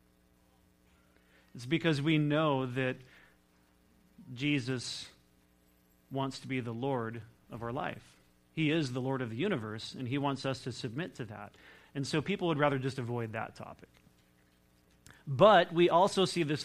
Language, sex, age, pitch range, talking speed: English, male, 30-49, 90-140 Hz, 155 wpm